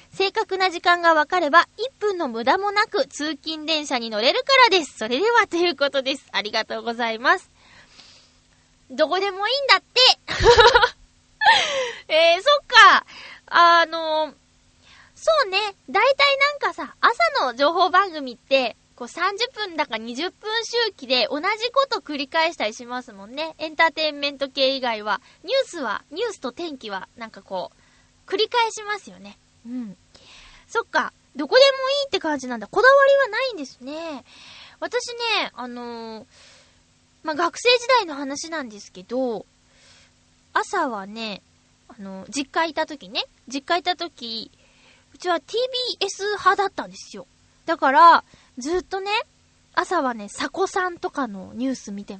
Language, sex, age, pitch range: Japanese, female, 20-39, 260-390 Hz